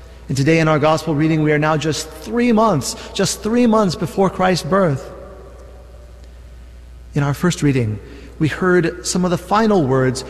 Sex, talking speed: male, 170 wpm